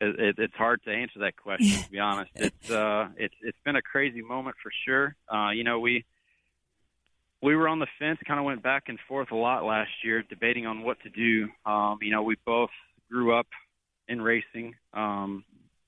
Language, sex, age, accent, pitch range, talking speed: English, male, 30-49, American, 105-115 Hz, 200 wpm